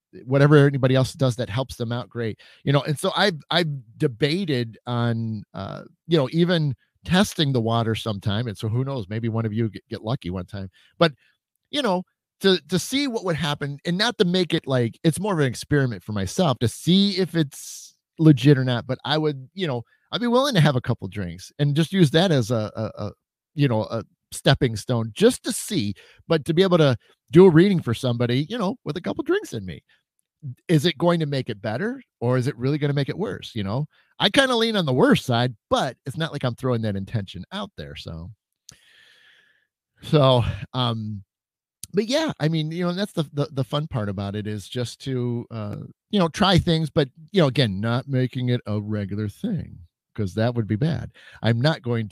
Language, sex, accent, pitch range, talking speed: English, male, American, 115-165 Hz, 220 wpm